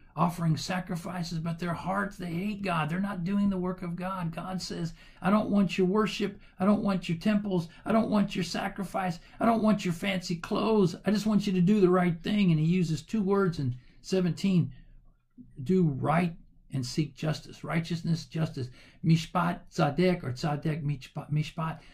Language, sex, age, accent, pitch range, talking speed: English, male, 50-69, American, 135-190 Hz, 185 wpm